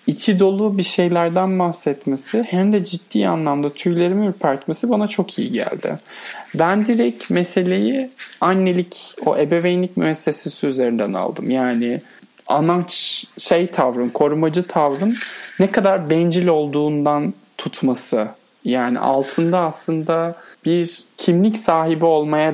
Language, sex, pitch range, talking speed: Turkish, male, 150-200 Hz, 110 wpm